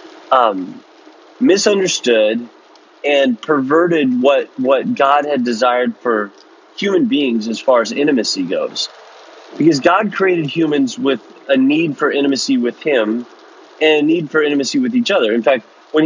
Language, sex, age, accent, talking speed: English, male, 30-49, American, 145 wpm